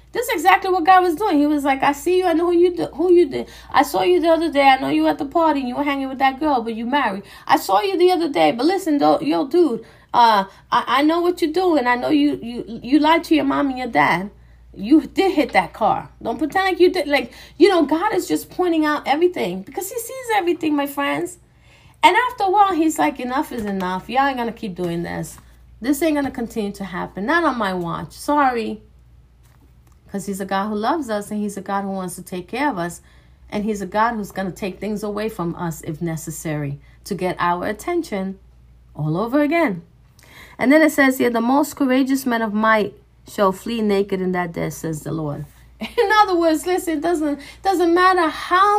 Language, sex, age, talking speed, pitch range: English, female, 30-49, 240 wpm, 205-330 Hz